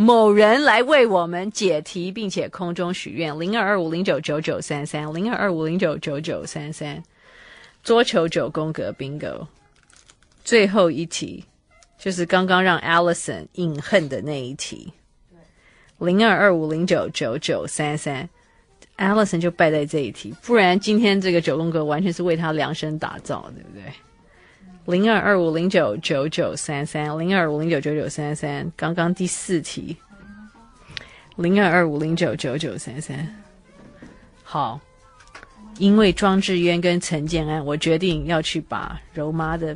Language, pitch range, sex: Chinese, 155-195 Hz, female